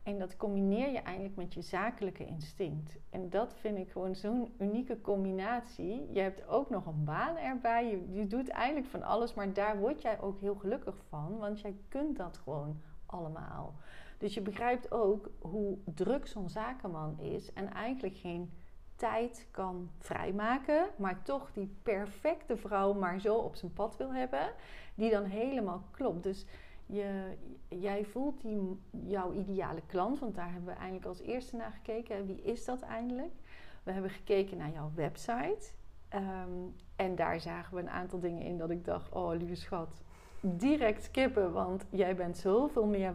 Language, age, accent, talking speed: Dutch, 40-59, Dutch, 170 wpm